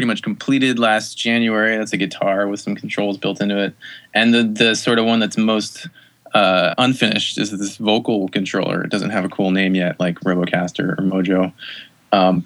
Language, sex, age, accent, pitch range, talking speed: English, male, 20-39, American, 95-115 Hz, 190 wpm